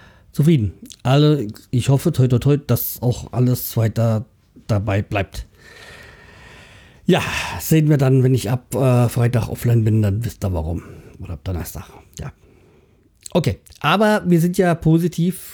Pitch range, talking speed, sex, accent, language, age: 110-155 Hz, 145 wpm, male, German, German, 50-69